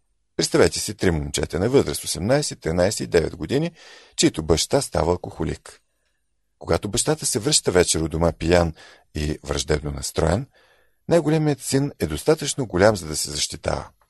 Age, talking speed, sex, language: 50-69, 150 wpm, male, Bulgarian